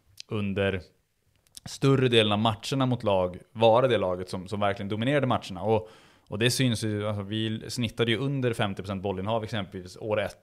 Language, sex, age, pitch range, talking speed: Swedish, male, 20-39, 100-120 Hz, 180 wpm